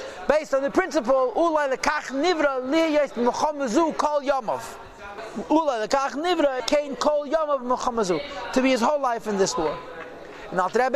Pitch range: 220-285 Hz